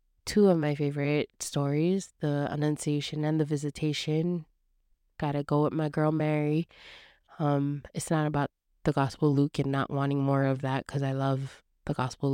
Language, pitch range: English, 145-175 Hz